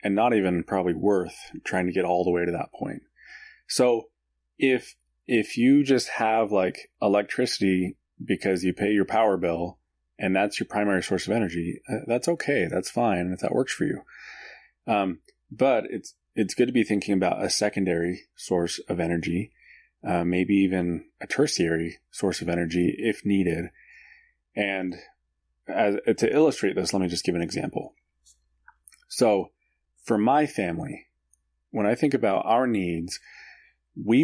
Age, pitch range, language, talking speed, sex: 20-39, 85-110 Hz, English, 160 wpm, male